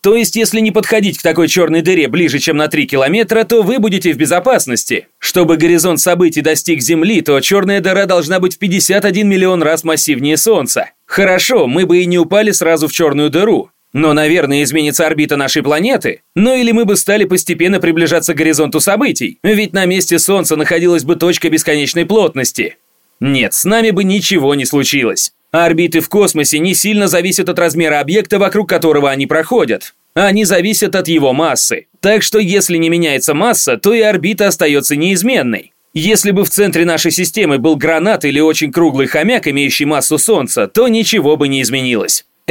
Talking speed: 180 wpm